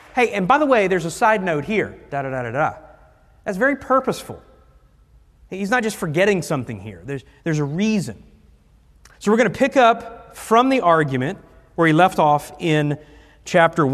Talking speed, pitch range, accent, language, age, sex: 185 wpm, 125-180 Hz, American, English, 40-59, male